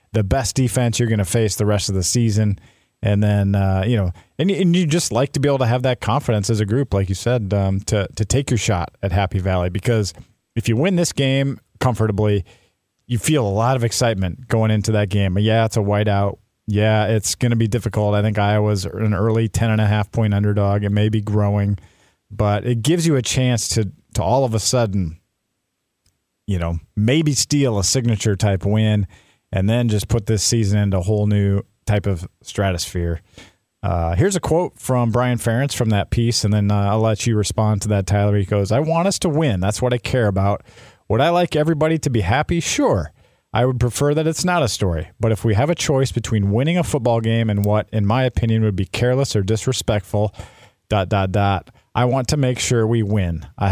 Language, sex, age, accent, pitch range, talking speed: English, male, 40-59, American, 100-125 Hz, 220 wpm